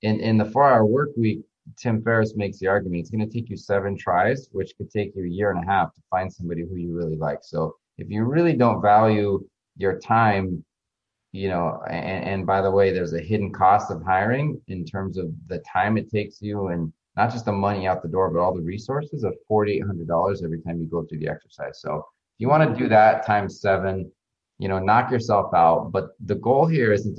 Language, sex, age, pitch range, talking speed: English, male, 30-49, 90-110 Hz, 230 wpm